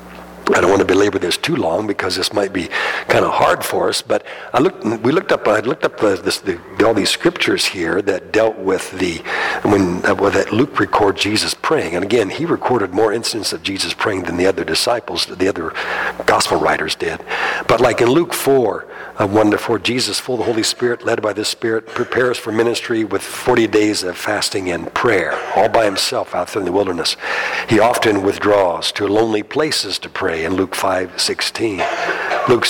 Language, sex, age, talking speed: English, male, 60-79, 205 wpm